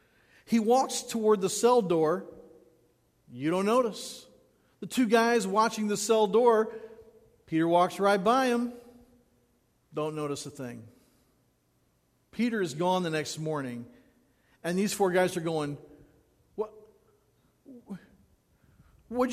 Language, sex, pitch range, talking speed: English, male, 165-230 Hz, 120 wpm